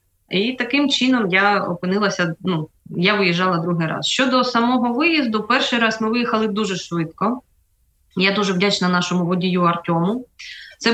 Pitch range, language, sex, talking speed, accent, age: 180-225 Hz, Ukrainian, female, 145 wpm, native, 20-39